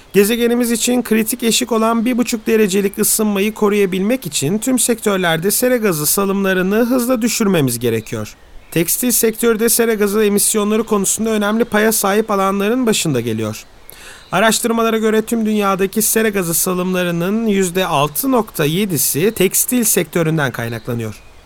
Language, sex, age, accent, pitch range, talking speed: Turkish, male, 40-59, native, 180-225 Hz, 115 wpm